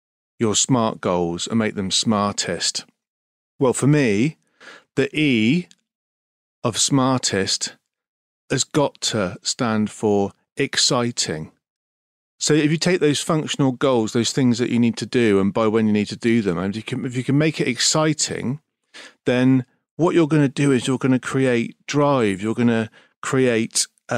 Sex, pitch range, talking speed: male, 110-145 Hz, 170 wpm